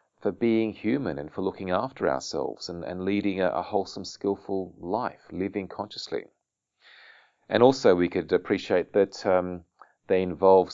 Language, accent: English, Australian